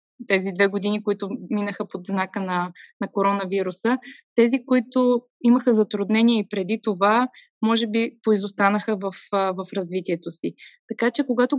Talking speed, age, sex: 140 wpm, 20-39, female